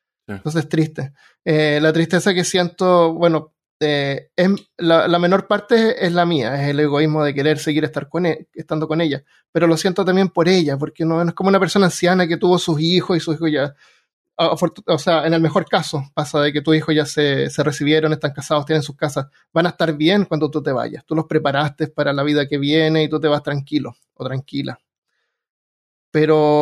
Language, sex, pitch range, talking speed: Spanish, male, 150-175 Hz, 215 wpm